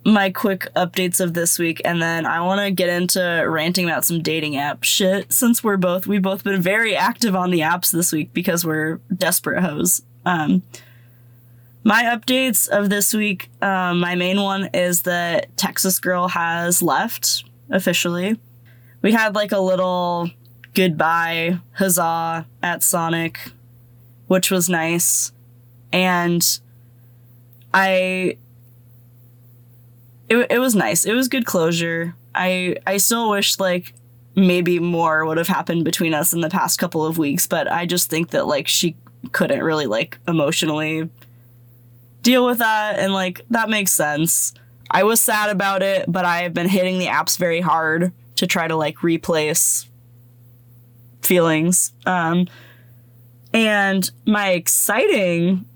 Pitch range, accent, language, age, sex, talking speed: 120-185 Hz, American, English, 20-39, female, 145 wpm